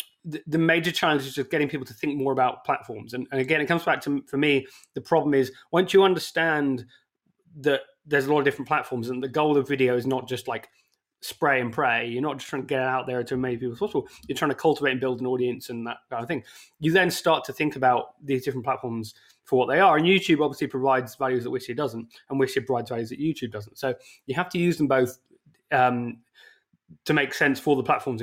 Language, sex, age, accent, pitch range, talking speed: English, male, 20-39, British, 125-150 Hz, 240 wpm